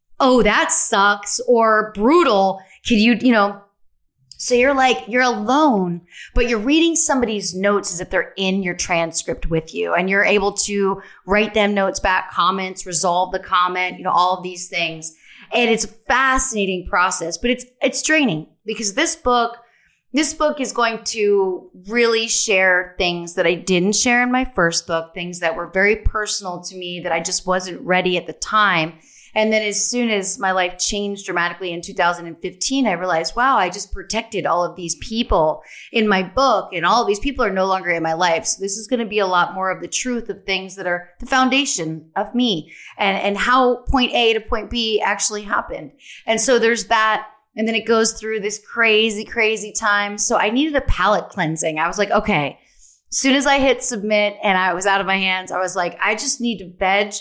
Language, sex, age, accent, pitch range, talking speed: English, female, 30-49, American, 180-235 Hz, 205 wpm